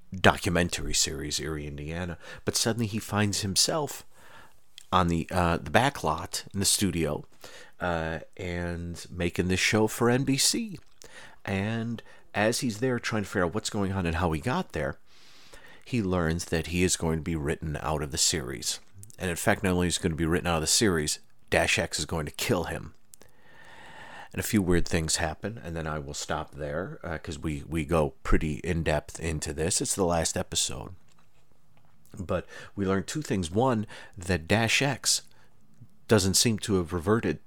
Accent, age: American, 40-59